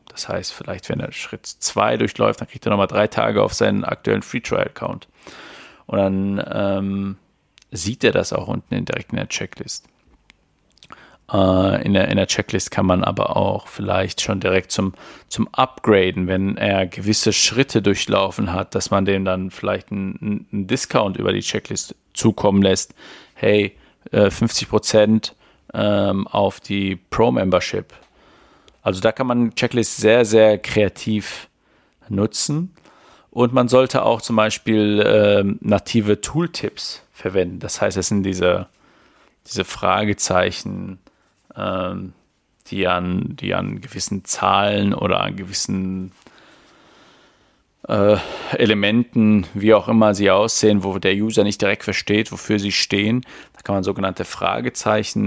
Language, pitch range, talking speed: German, 95-110 Hz, 140 wpm